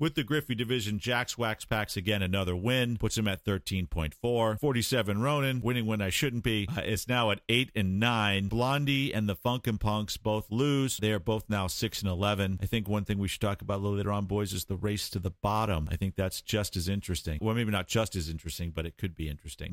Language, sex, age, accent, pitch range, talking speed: English, male, 50-69, American, 95-115 Hz, 235 wpm